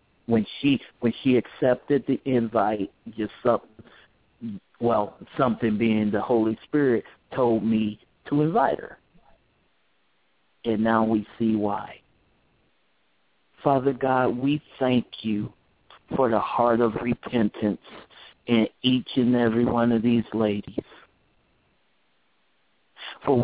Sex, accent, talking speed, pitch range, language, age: male, American, 115 wpm, 110-130 Hz, English, 50-69